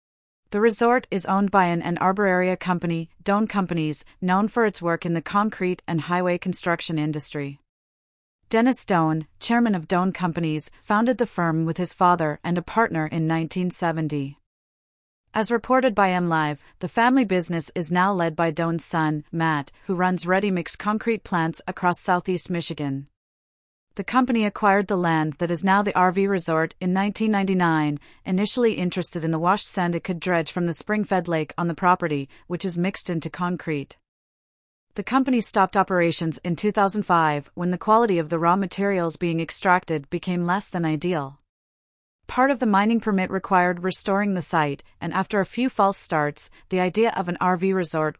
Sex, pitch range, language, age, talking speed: female, 160-195 Hz, English, 40-59, 170 wpm